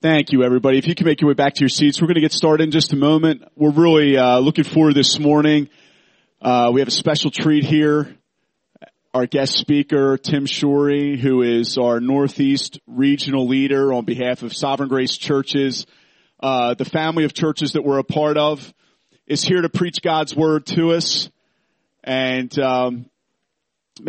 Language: English